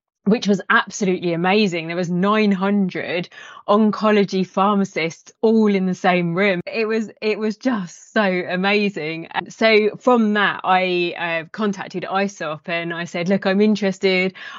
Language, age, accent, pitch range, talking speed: English, 20-39, British, 170-195 Hz, 145 wpm